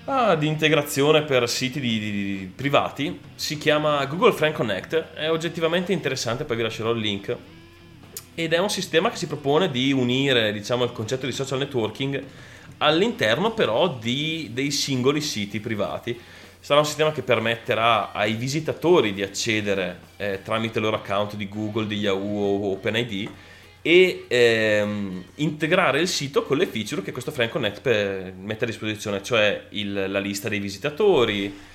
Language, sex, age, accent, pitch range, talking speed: Italian, male, 30-49, native, 100-140 Hz, 165 wpm